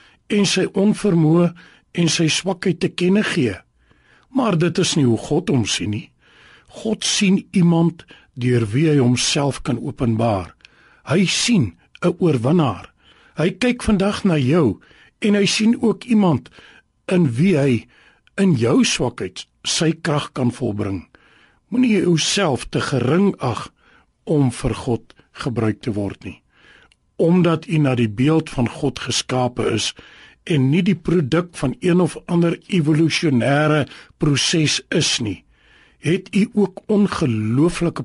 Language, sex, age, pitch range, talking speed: English, male, 60-79, 130-185 Hz, 135 wpm